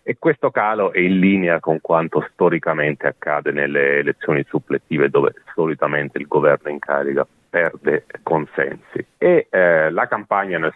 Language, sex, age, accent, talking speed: Italian, male, 30-49, native, 145 wpm